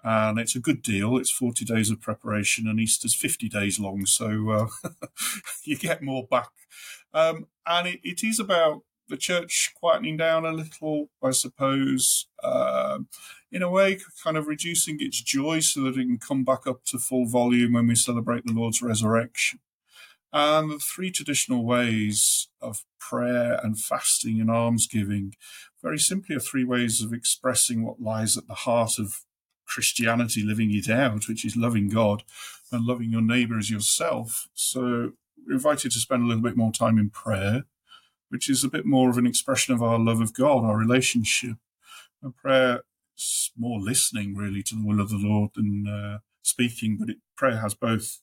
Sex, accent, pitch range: male, British, 110-135 Hz